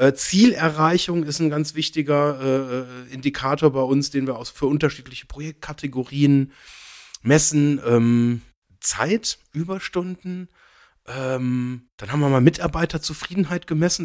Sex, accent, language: male, German, German